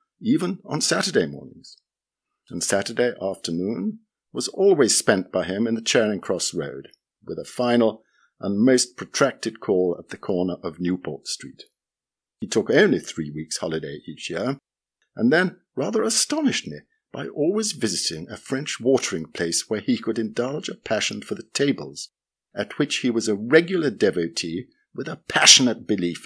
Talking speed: 160 wpm